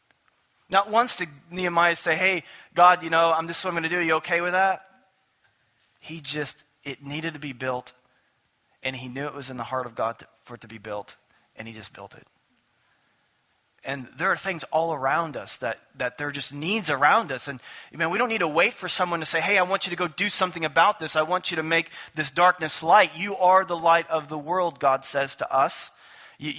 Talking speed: 230 wpm